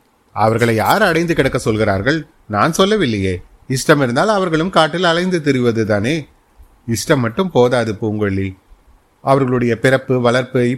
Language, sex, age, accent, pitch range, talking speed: Tamil, male, 30-49, native, 110-145 Hz, 110 wpm